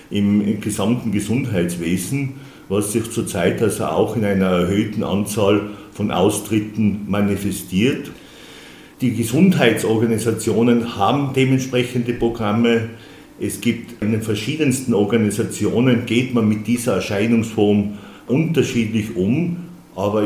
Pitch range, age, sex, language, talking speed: 100-115 Hz, 50-69, male, German, 100 wpm